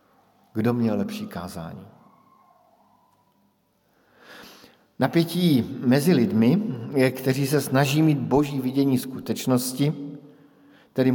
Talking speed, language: 80 wpm, Slovak